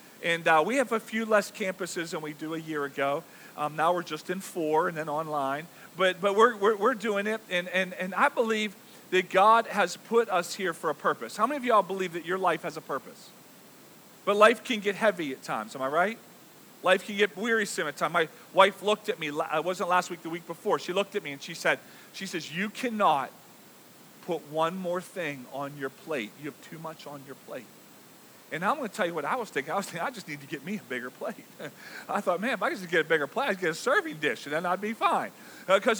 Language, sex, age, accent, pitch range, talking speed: English, male, 40-59, American, 175-235 Hz, 255 wpm